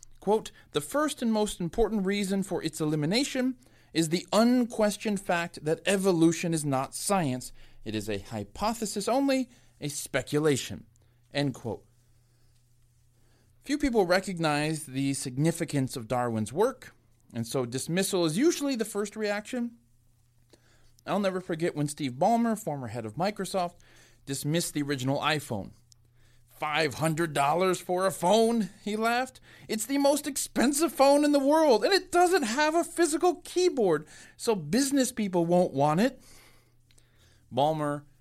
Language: English